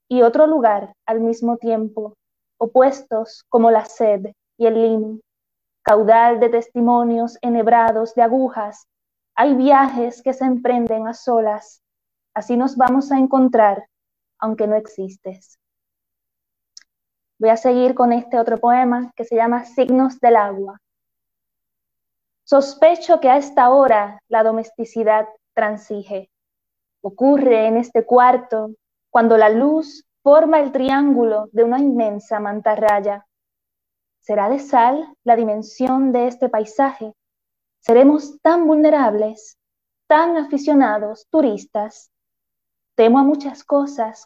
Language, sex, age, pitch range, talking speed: Spanish, female, 20-39, 220-260 Hz, 120 wpm